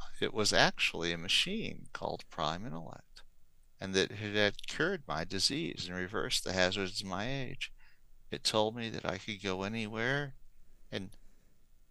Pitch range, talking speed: 90-115 Hz, 155 wpm